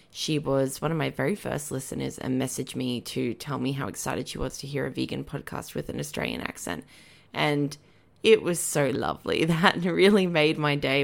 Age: 20-39